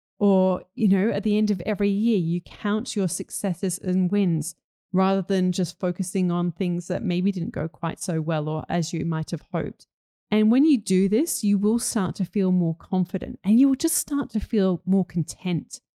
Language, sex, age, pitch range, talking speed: English, female, 30-49, 175-215 Hz, 205 wpm